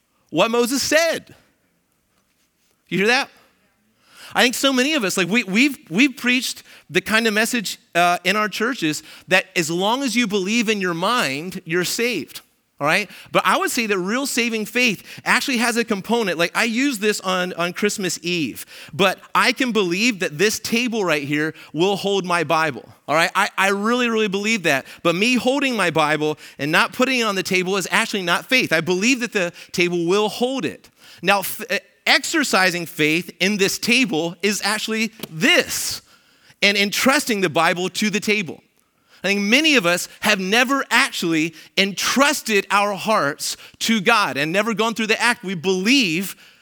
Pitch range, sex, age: 180-235 Hz, male, 30-49